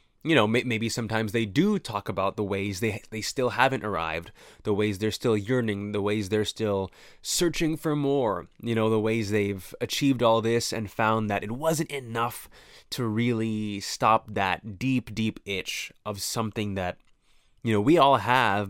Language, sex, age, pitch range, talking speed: English, male, 20-39, 105-130 Hz, 180 wpm